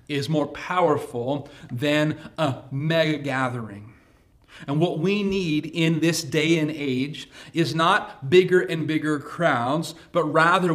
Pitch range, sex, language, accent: 130-160 Hz, male, English, American